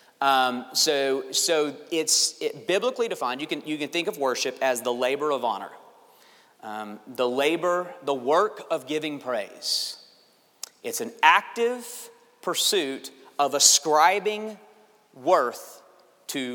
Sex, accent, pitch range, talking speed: male, American, 140-180 Hz, 125 wpm